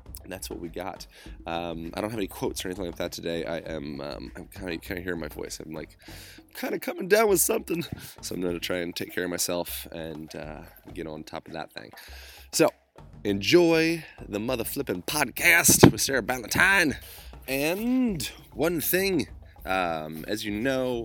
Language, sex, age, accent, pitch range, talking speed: English, male, 20-39, American, 85-115 Hz, 185 wpm